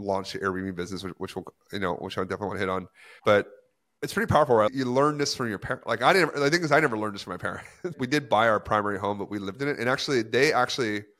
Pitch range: 95-110 Hz